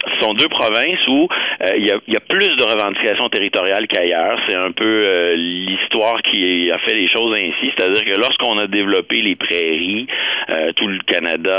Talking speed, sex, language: 190 wpm, male, French